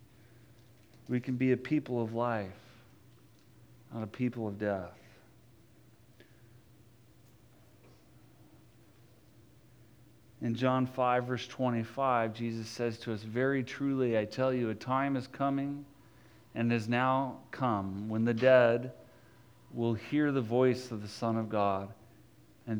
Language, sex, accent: English, male, American